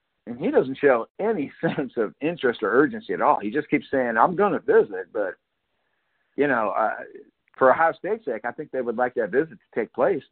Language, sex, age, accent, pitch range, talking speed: English, male, 50-69, American, 110-140 Hz, 215 wpm